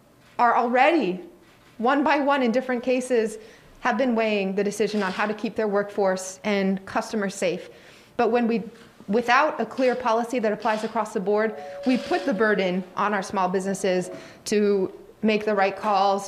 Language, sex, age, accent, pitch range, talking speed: English, female, 20-39, American, 200-230 Hz, 175 wpm